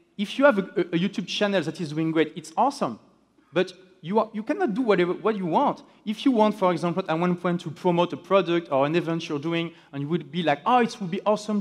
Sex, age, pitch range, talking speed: male, 30-49, 160-205 Hz, 260 wpm